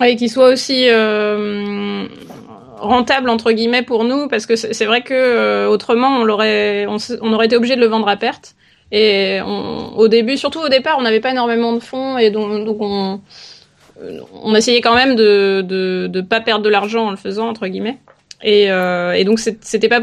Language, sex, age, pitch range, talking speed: French, female, 20-39, 205-240 Hz, 215 wpm